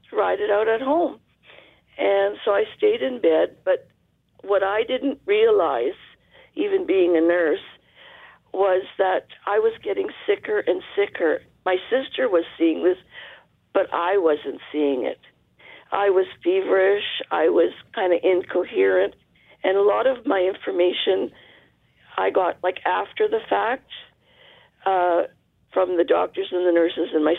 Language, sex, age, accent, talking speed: English, female, 50-69, American, 145 wpm